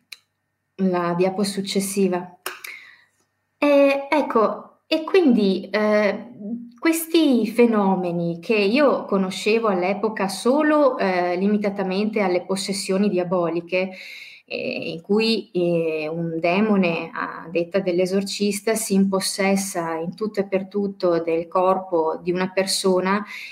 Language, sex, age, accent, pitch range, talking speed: Italian, female, 20-39, native, 180-225 Hz, 100 wpm